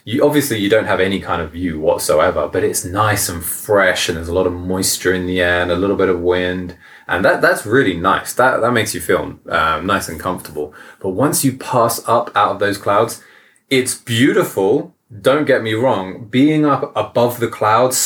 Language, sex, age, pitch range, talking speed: English, male, 20-39, 90-120 Hz, 215 wpm